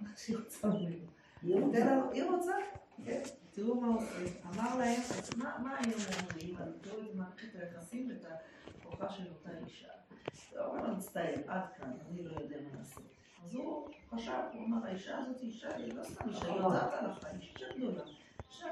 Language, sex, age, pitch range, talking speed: Hebrew, female, 40-59, 175-230 Hz, 165 wpm